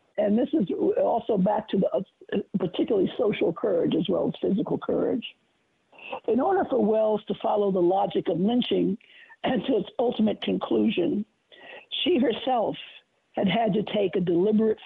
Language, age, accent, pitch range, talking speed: English, 60-79, American, 195-260 Hz, 160 wpm